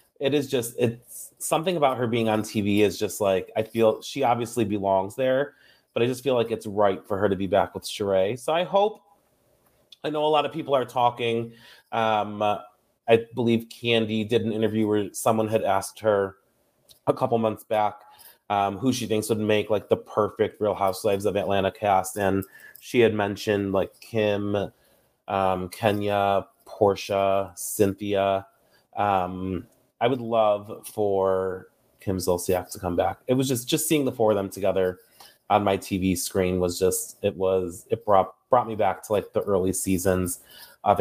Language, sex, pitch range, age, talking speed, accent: English, male, 100-115 Hz, 30-49, 180 wpm, American